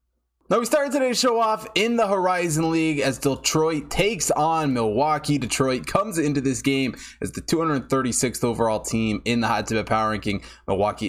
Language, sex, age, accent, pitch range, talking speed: English, male, 20-39, American, 115-150 Hz, 175 wpm